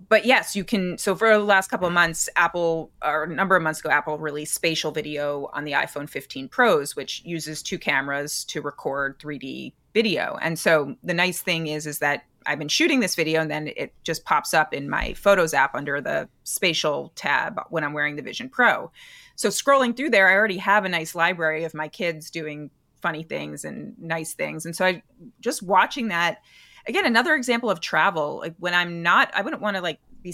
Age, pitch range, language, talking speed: 30-49, 155-205 Hz, English, 210 wpm